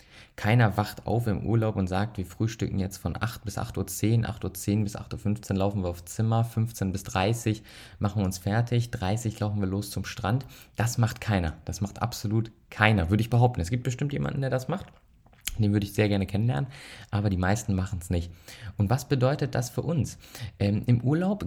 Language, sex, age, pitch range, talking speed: German, male, 20-39, 100-125 Hz, 205 wpm